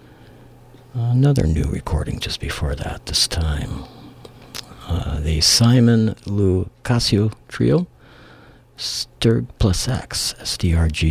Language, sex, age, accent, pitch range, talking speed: English, male, 60-79, American, 80-115 Hz, 95 wpm